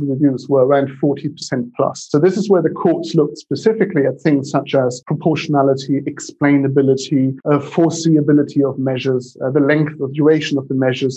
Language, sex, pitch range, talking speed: English, male, 130-150 Hz, 165 wpm